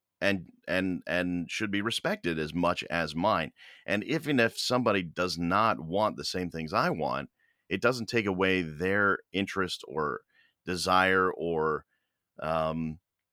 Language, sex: English, male